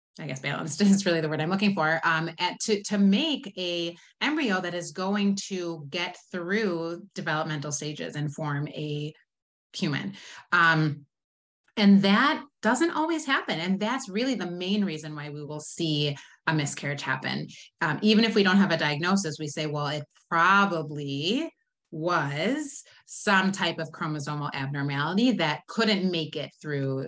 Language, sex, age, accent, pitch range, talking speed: English, female, 30-49, American, 150-200 Hz, 160 wpm